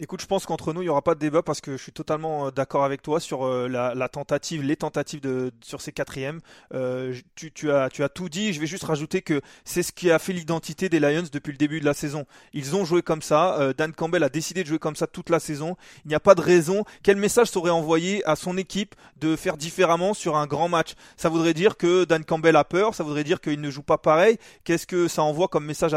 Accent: French